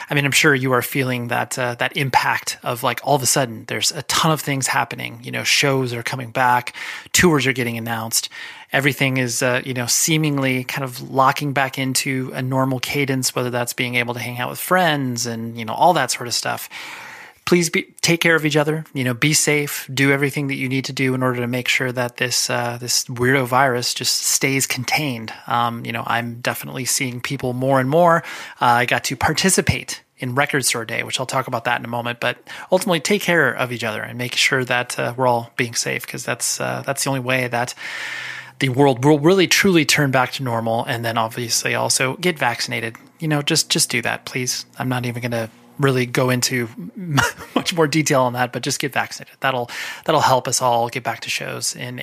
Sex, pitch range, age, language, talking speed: male, 120-145 Hz, 30-49, English, 225 wpm